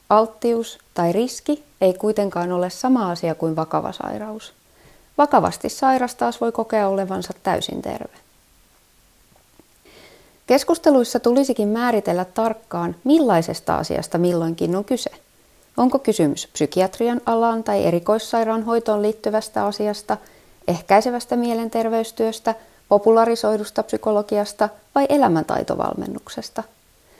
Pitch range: 180-245 Hz